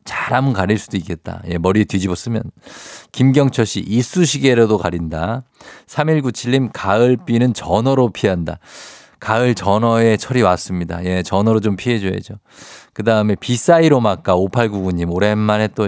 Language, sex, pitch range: Korean, male, 95-135 Hz